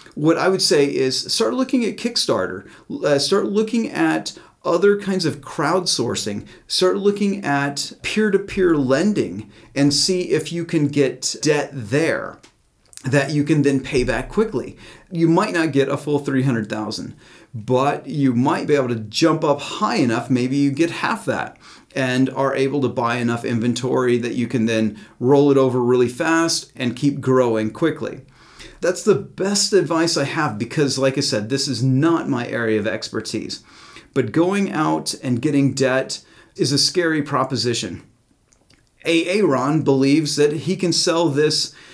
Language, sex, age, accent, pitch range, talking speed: English, male, 40-59, American, 130-165 Hz, 160 wpm